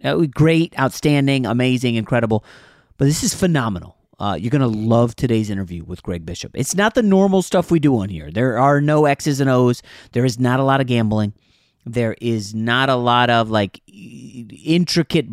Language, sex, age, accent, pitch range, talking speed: English, male, 30-49, American, 105-135 Hz, 190 wpm